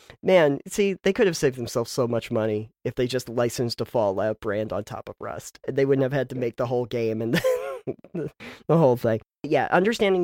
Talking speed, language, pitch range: 210 wpm, English, 125-155 Hz